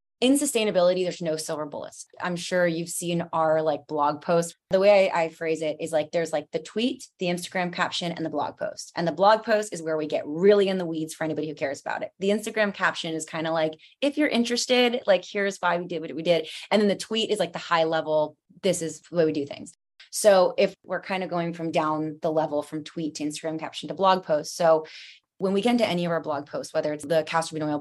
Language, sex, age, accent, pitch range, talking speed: English, female, 20-39, American, 160-195 Hz, 250 wpm